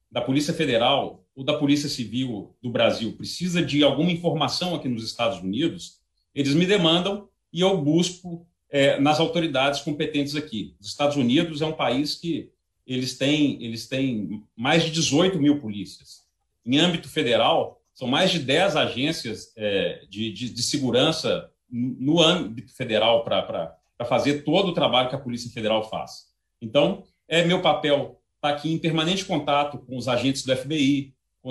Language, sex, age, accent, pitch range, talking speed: Portuguese, male, 40-59, Brazilian, 120-155 Hz, 160 wpm